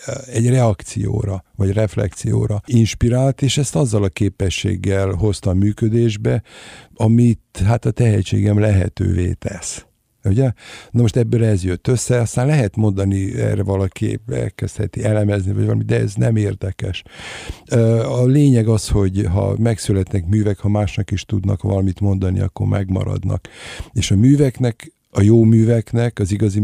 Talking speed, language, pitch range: 135 wpm, Hungarian, 100-115 Hz